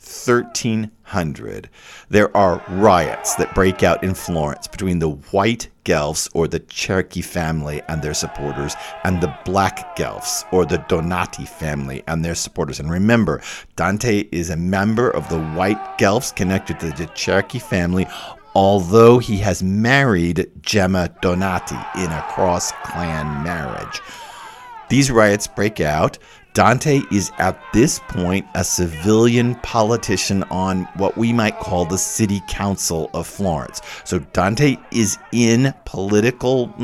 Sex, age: male, 50-69